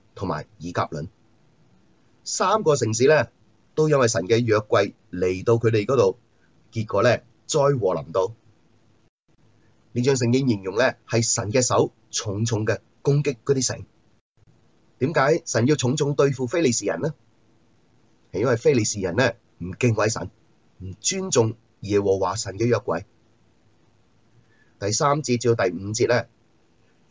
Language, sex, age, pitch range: Chinese, male, 30-49, 110-125 Hz